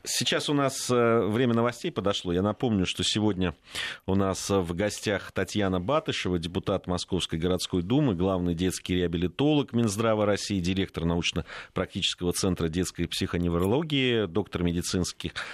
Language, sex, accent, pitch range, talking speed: Russian, male, native, 90-115 Hz, 125 wpm